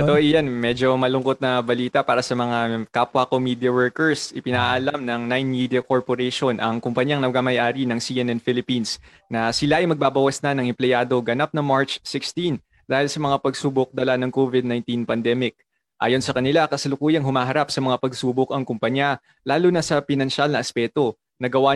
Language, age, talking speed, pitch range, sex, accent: English, 20-39, 165 wpm, 125-140 Hz, male, Filipino